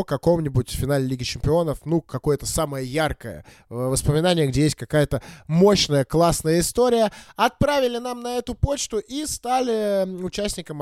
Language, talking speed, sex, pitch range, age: Russian, 130 wpm, male, 145-195 Hz, 20-39